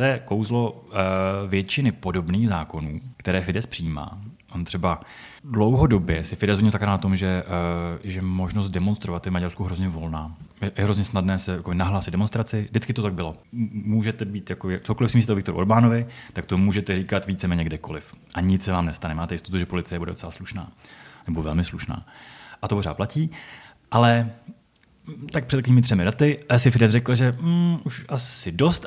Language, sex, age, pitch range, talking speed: Czech, male, 30-49, 95-120 Hz, 180 wpm